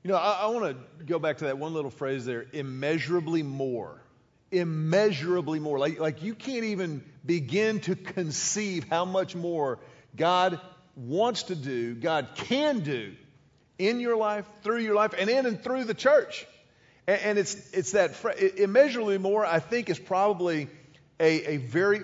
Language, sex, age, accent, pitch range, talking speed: English, male, 40-59, American, 150-195 Hz, 170 wpm